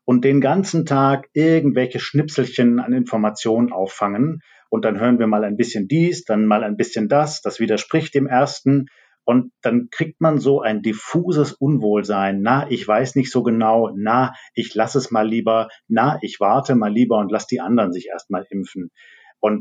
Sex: male